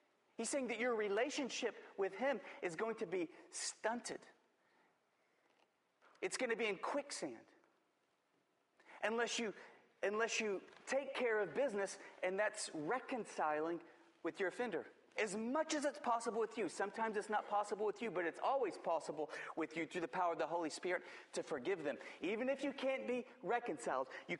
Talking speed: 165 wpm